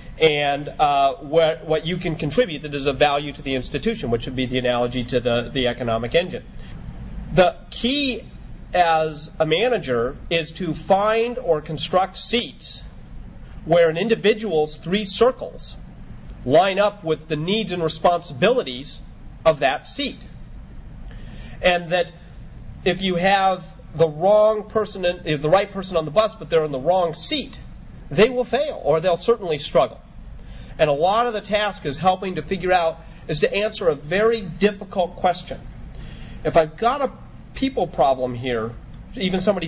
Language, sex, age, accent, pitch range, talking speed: English, male, 40-59, American, 150-200 Hz, 160 wpm